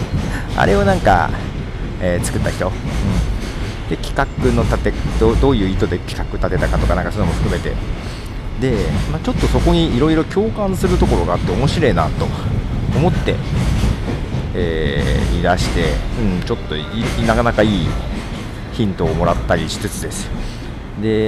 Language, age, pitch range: Japanese, 40-59, 80-125 Hz